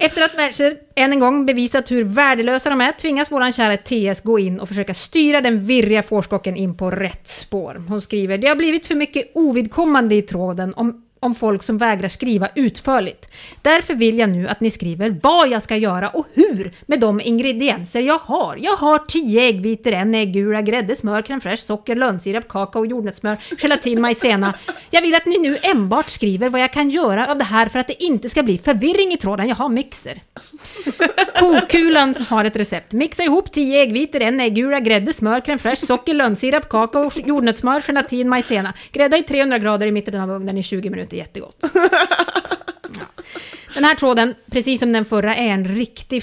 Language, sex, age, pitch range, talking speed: English, female, 30-49, 210-285 Hz, 190 wpm